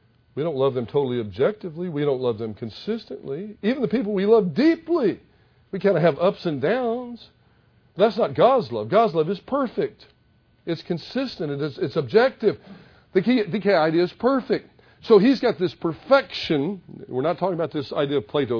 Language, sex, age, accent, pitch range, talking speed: English, male, 50-69, American, 150-230 Hz, 185 wpm